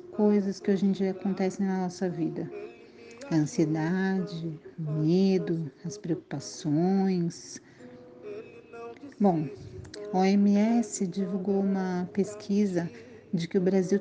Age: 40-59